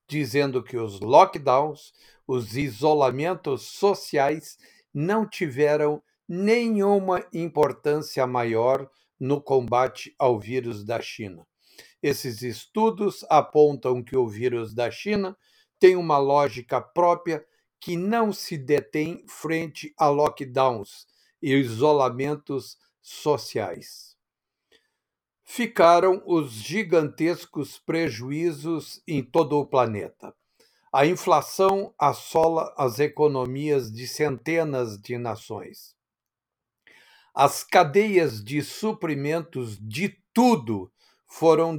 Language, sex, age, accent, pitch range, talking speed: English, male, 60-79, Brazilian, 130-175 Hz, 90 wpm